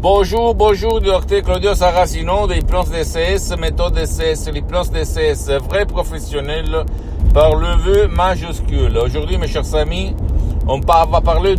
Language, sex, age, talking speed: Italian, male, 60-79, 145 wpm